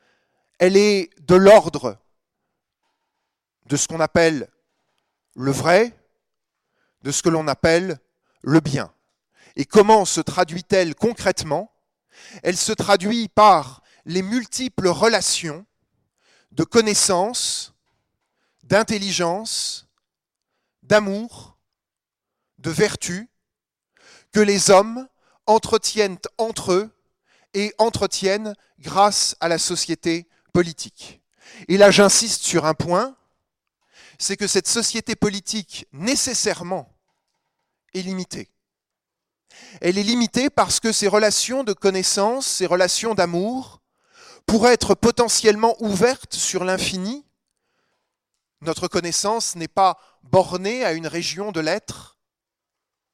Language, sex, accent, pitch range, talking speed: French, male, French, 170-220 Hz, 100 wpm